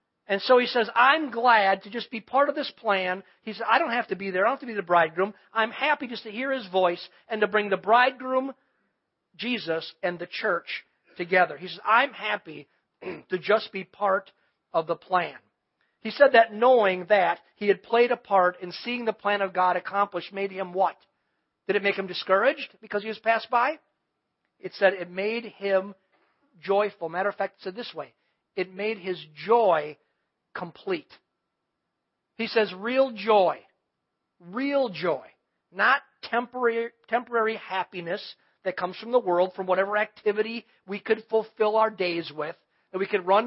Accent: American